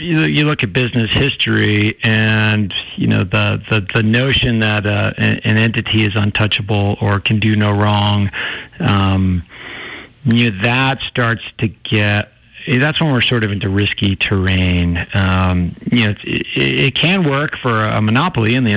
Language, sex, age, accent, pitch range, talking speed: English, male, 50-69, American, 105-135 Hz, 160 wpm